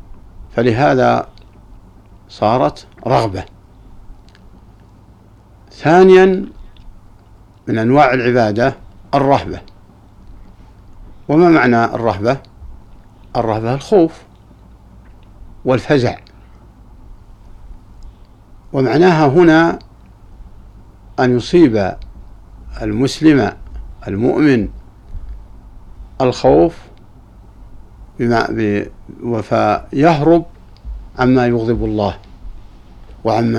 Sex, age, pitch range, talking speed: male, 60-79, 100-125 Hz, 50 wpm